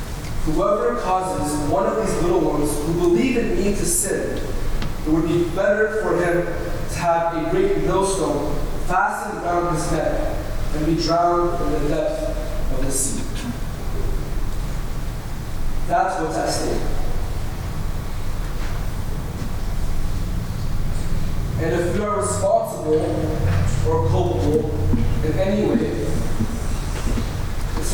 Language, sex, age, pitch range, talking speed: English, male, 40-59, 110-175 Hz, 110 wpm